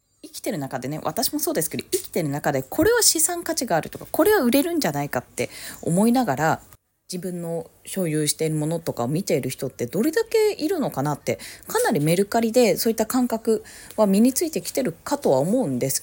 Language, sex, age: Japanese, female, 20-39